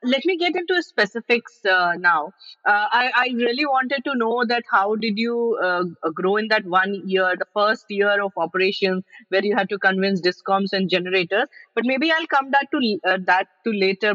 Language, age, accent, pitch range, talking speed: English, 30-49, Indian, 185-230 Hz, 200 wpm